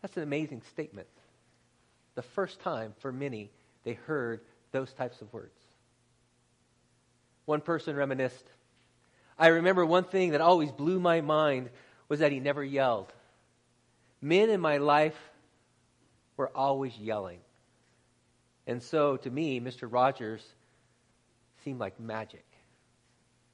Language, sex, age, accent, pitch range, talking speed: English, male, 40-59, American, 125-180 Hz, 120 wpm